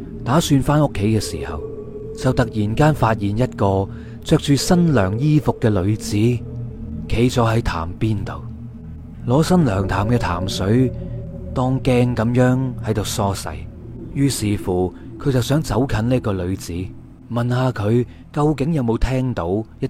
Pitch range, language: 105-130 Hz, Chinese